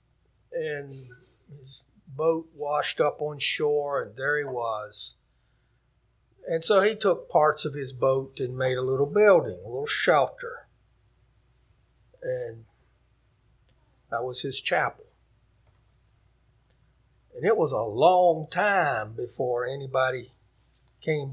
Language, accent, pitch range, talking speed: English, American, 135-170 Hz, 115 wpm